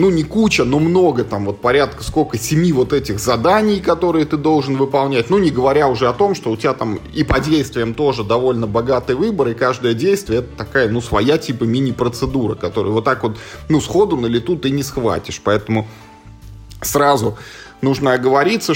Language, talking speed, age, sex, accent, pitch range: Russian, 190 wpm, 20-39, male, native, 110-155 Hz